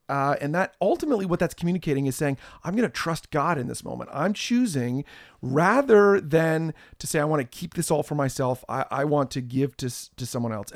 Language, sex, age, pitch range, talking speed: English, male, 40-59, 135-185 Hz, 230 wpm